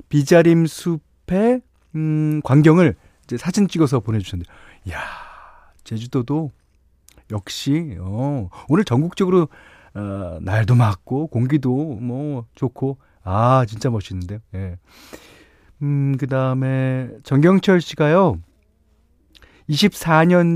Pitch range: 105-160 Hz